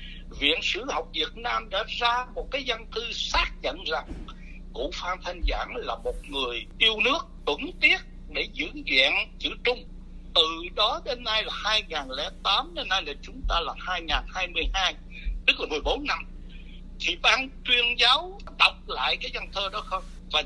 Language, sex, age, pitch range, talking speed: Vietnamese, male, 60-79, 165-250 Hz, 175 wpm